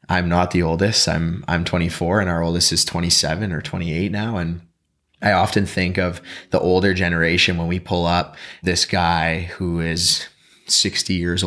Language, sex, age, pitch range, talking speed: English, male, 20-39, 80-90 Hz, 175 wpm